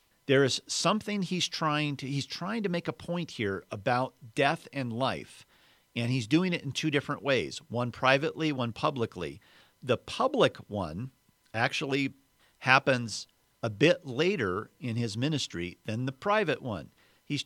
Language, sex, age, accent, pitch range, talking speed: English, male, 50-69, American, 110-150 Hz, 155 wpm